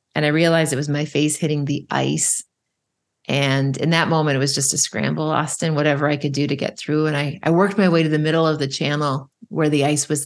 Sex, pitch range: female, 145-170 Hz